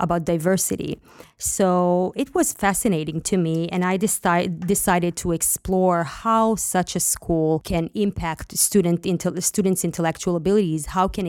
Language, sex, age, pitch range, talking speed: English, female, 20-39, 165-190 Hz, 145 wpm